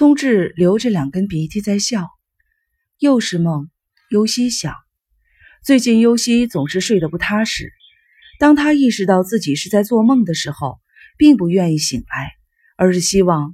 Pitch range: 160-230 Hz